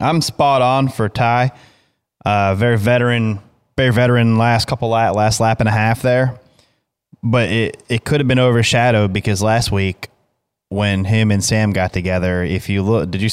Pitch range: 100-125 Hz